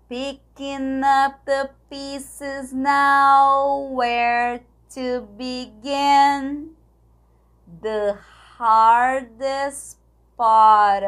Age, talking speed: 20-39, 60 wpm